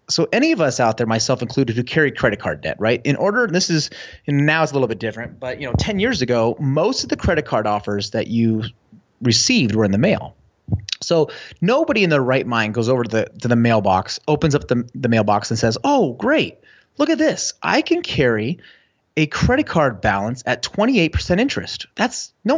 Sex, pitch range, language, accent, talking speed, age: male, 115-180 Hz, English, American, 220 wpm, 30-49